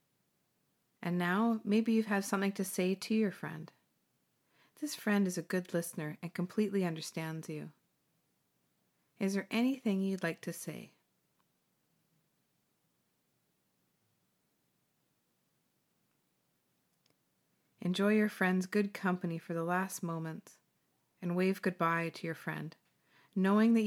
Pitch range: 165-200 Hz